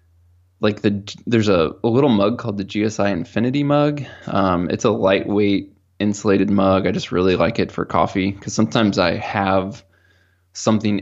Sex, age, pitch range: male, 20-39, 90-110 Hz